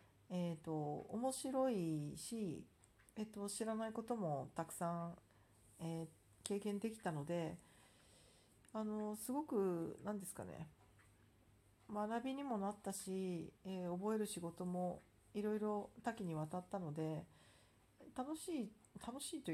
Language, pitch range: Japanese, 160-215 Hz